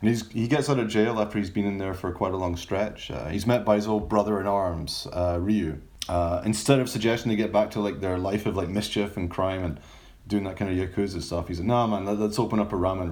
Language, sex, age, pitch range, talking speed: English, male, 30-49, 90-115 Hz, 270 wpm